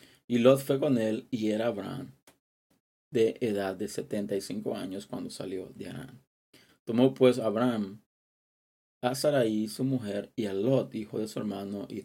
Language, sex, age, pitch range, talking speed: Spanish, male, 30-49, 105-130 Hz, 160 wpm